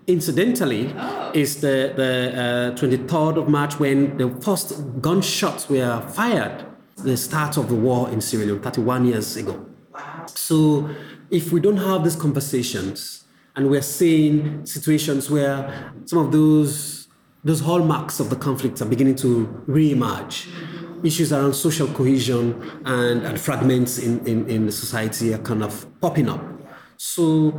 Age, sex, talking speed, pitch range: 30-49, male, 145 wpm, 125-155 Hz